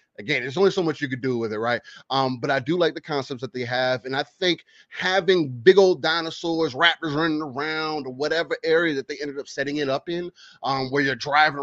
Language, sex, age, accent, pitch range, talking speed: English, male, 30-49, American, 130-155 Hz, 235 wpm